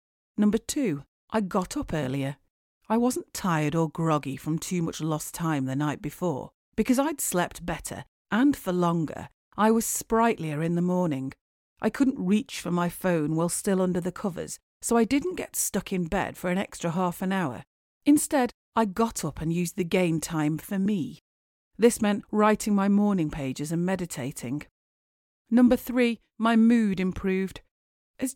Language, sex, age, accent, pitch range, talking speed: English, female, 40-59, British, 160-210 Hz, 170 wpm